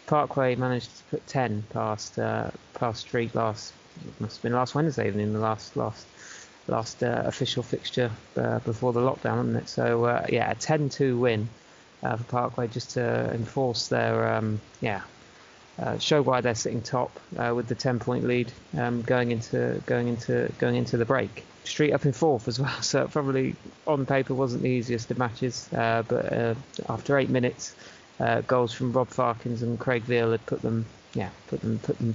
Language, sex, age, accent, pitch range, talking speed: English, male, 30-49, British, 115-125 Hz, 190 wpm